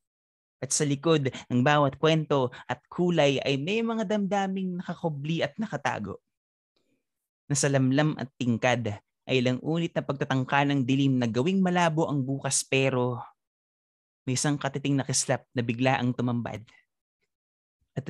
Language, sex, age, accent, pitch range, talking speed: Filipino, male, 20-39, native, 130-170 Hz, 135 wpm